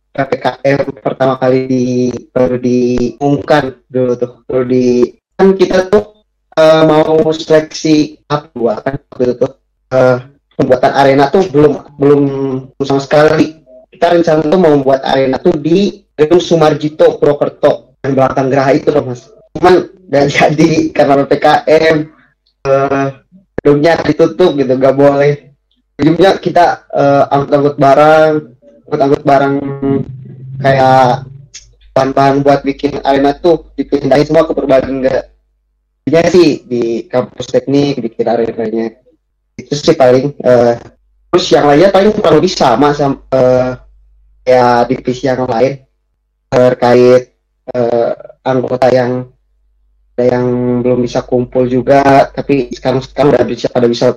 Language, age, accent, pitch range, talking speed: Indonesian, 20-39, native, 125-150 Hz, 125 wpm